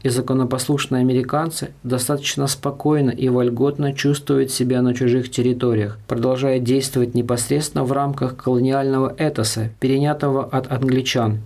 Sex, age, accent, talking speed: male, 20-39, native, 115 wpm